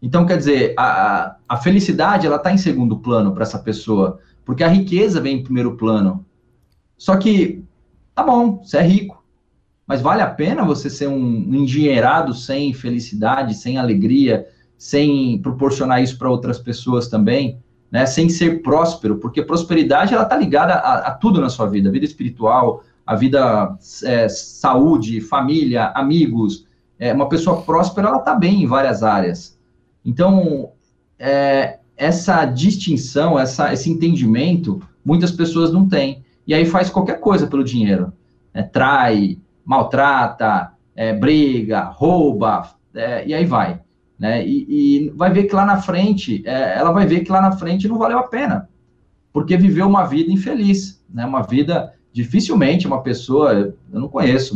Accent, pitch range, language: Brazilian, 120-180 Hz, Portuguese